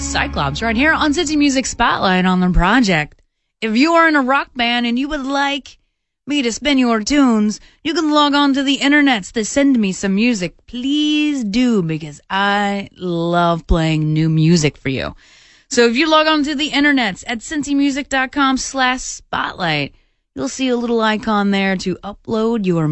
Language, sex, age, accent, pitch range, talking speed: English, female, 20-39, American, 170-260 Hz, 180 wpm